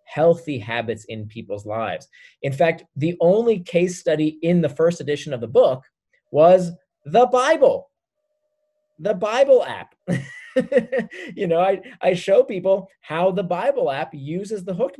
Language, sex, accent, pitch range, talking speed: English, male, American, 140-190 Hz, 150 wpm